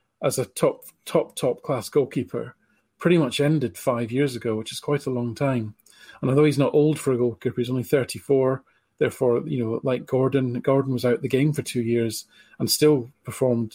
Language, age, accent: English, 40-59, British